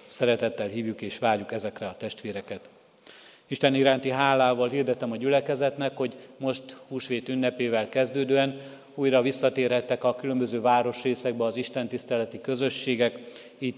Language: Hungarian